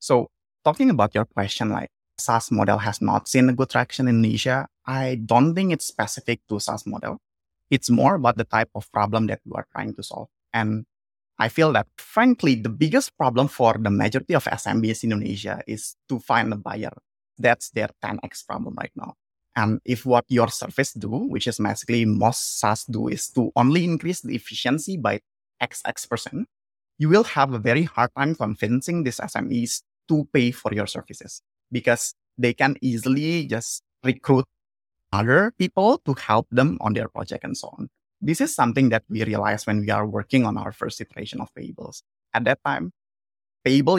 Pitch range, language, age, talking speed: 110-135 Hz, English, 20-39, 185 wpm